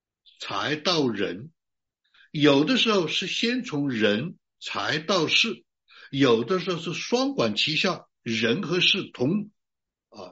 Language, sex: Chinese, male